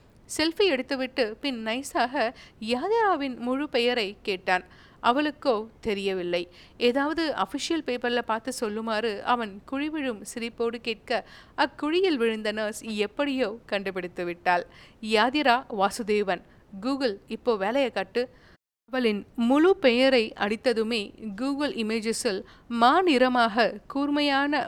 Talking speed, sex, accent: 95 wpm, female, native